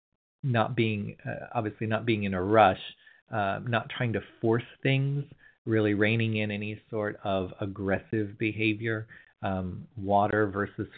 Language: English